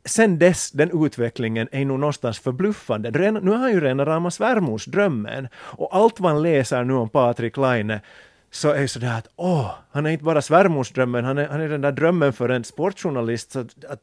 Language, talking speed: Swedish, 200 wpm